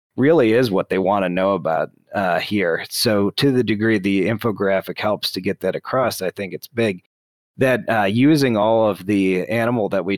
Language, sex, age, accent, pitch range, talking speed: English, male, 30-49, American, 95-120 Hz, 200 wpm